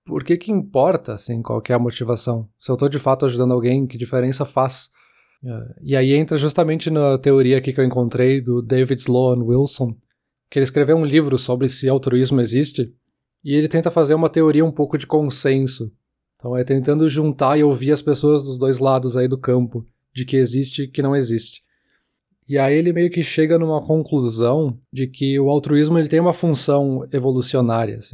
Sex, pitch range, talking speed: male, 125-150 Hz, 190 wpm